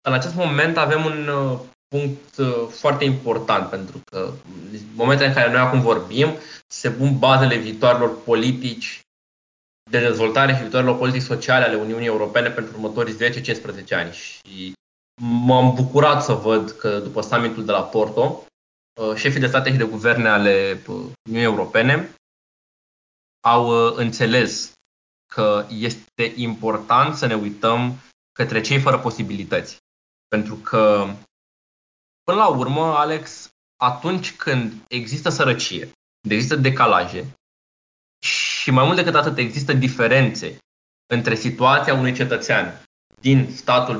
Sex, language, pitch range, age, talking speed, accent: male, Romanian, 115-140 Hz, 20-39, 125 wpm, native